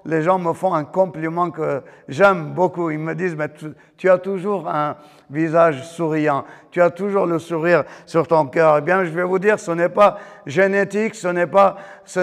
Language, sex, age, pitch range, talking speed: French, male, 50-69, 160-195 Hz, 200 wpm